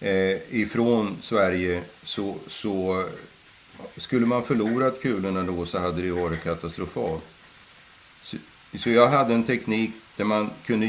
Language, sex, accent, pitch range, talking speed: Swedish, male, native, 95-115 Hz, 140 wpm